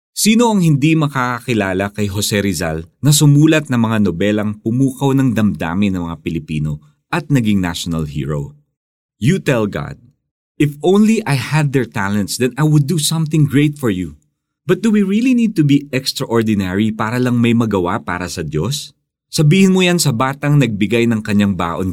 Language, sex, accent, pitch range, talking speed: Filipino, male, native, 95-145 Hz, 170 wpm